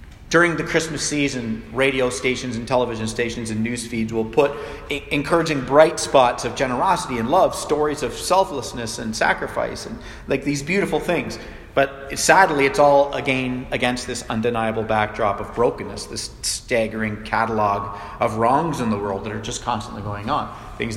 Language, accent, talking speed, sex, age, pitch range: English, American, 165 wpm, male, 40-59, 115-150 Hz